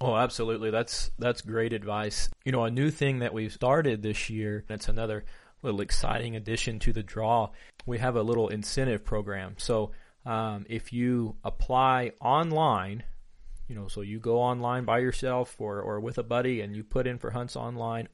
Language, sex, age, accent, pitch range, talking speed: English, male, 30-49, American, 110-130 Hz, 185 wpm